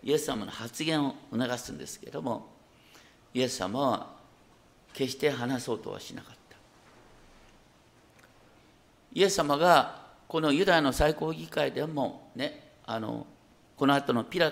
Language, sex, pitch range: Japanese, male, 145-220 Hz